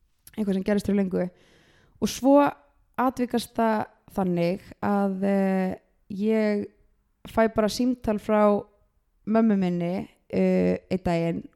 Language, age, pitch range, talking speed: English, 20-39, 185-220 Hz, 110 wpm